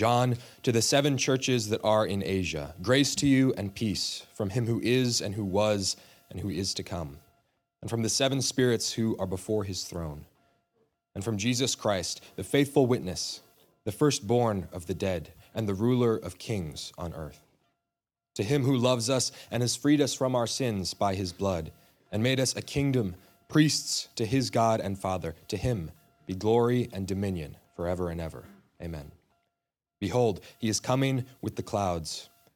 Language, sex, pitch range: English, male, 95-120 Hz